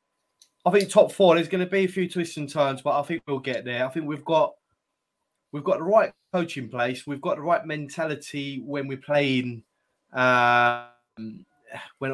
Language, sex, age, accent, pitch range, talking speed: English, male, 20-39, British, 125-145 Hz, 200 wpm